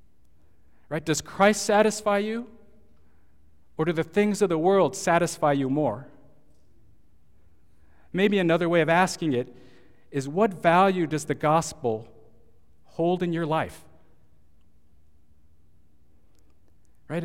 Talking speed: 110 wpm